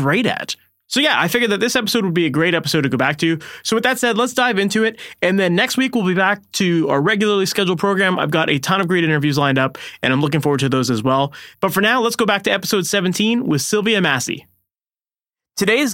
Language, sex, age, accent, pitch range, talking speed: English, male, 20-39, American, 140-185 Hz, 255 wpm